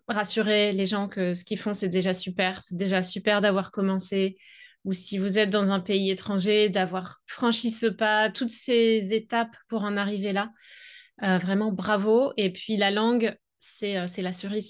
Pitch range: 185-230 Hz